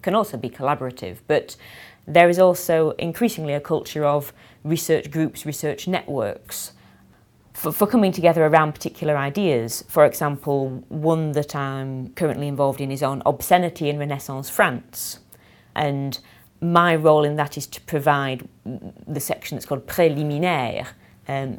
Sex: female